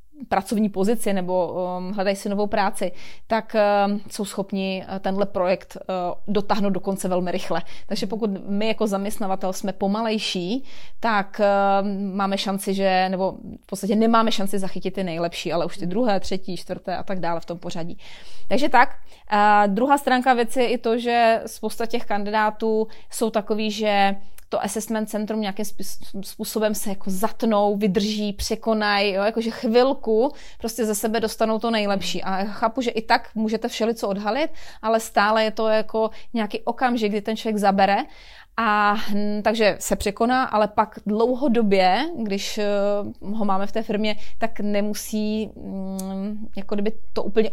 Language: Czech